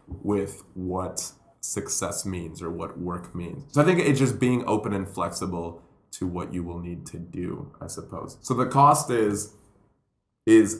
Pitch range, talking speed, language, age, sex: 95-130 Hz, 170 wpm, English, 20-39, male